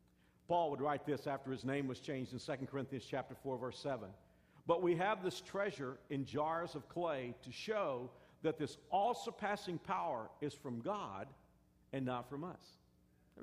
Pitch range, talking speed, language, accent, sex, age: 125-190 Hz, 175 wpm, English, American, male, 50-69